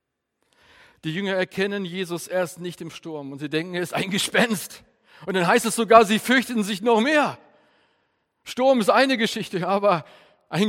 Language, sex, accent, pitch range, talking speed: German, male, German, 150-220 Hz, 175 wpm